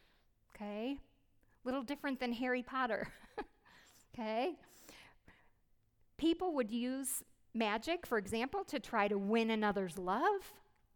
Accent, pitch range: American, 205-270 Hz